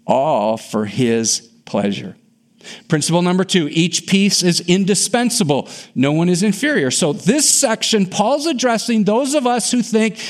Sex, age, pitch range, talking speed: male, 50-69, 150-220 Hz, 145 wpm